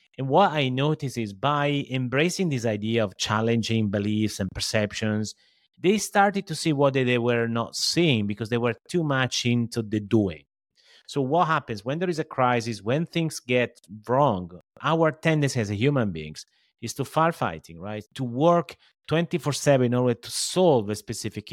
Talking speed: 170 wpm